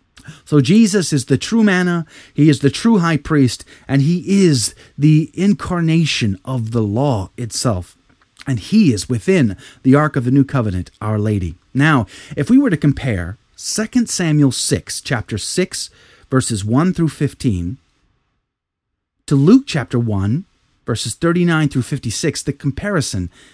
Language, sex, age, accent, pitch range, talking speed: English, male, 30-49, American, 115-165 Hz, 150 wpm